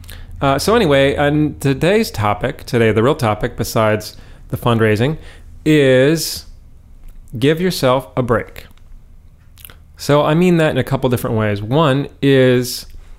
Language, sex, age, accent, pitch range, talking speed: English, male, 30-49, American, 100-140 Hz, 130 wpm